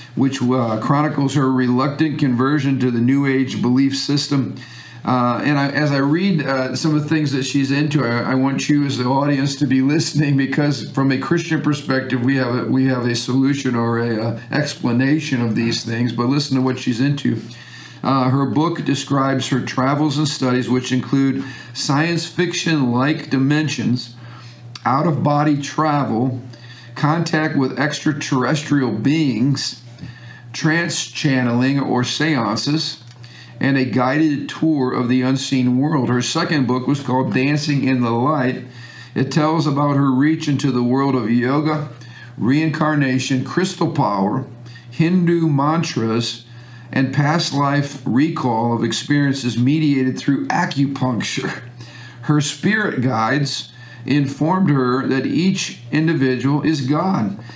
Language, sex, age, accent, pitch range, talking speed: English, male, 50-69, American, 125-150 Hz, 135 wpm